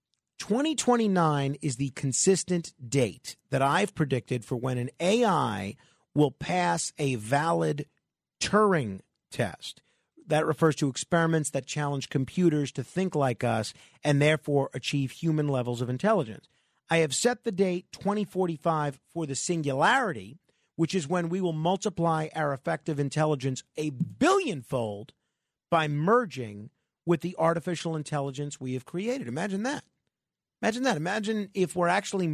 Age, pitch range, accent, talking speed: 40-59, 145-195 Hz, American, 135 wpm